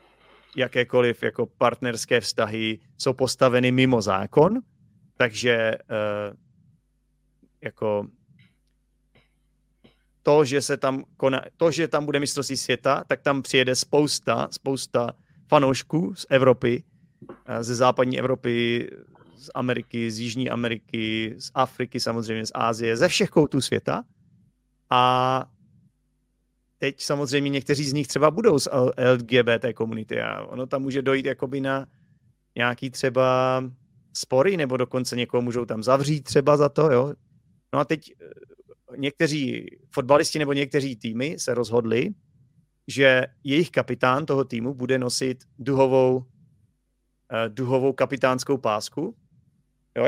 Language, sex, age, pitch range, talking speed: Czech, male, 30-49, 120-145 Hz, 120 wpm